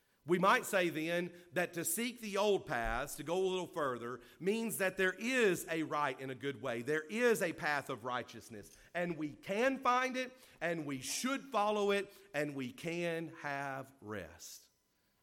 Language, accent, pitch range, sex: English, American, 135-185 Hz, male